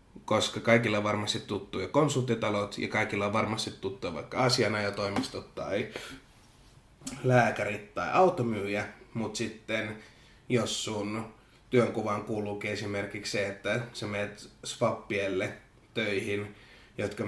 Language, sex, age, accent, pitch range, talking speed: Finnish, male, 20-39, native, 100-115 Hz, 110 wpm